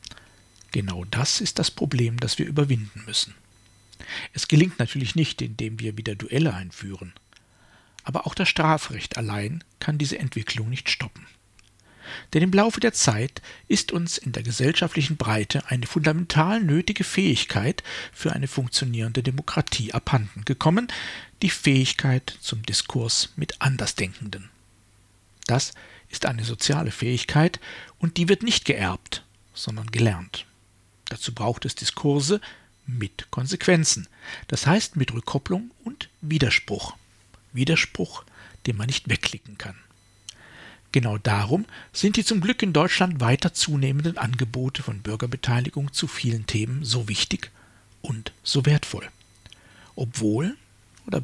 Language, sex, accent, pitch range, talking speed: German, male, German, 105-150 Hz, 125 wpm